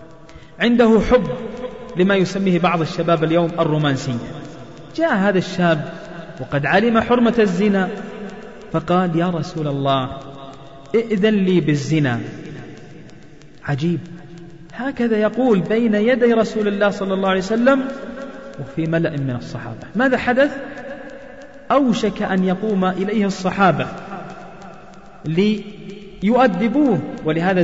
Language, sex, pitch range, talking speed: Arabic, male, 155-220 Hz, 100 wpm